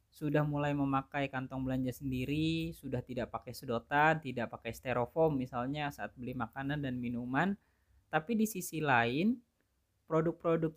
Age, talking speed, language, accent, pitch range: 20-39, 135 wpm, Indonesian, native, 125-150 Hz